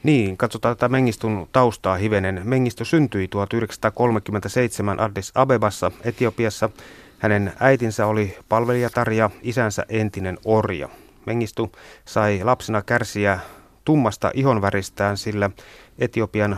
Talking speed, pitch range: 100 wpm, 100-120 Hz